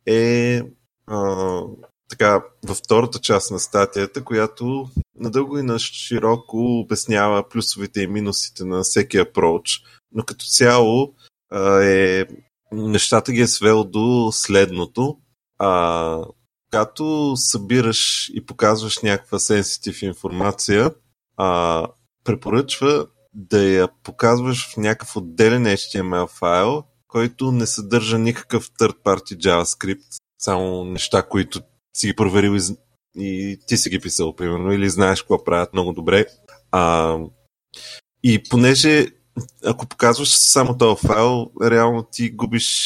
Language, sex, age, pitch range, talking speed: Bulgarian, male, 20-39, 95-120 Hz, 120 wpm